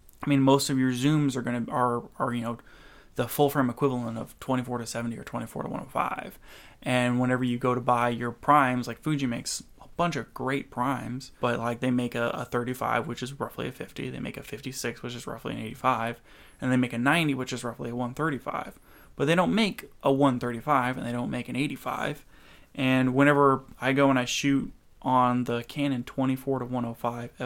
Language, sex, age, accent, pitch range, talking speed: English, male, 20-39, American, 120-135 Hz, 210 wpm